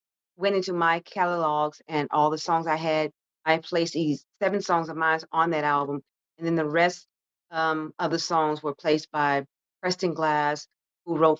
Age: 40-59